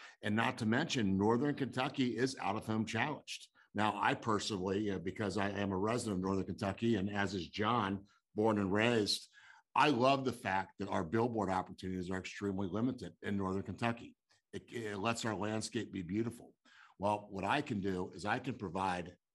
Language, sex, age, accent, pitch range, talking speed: English, male, 50-69, American, 95-125 Hz, 185 wpm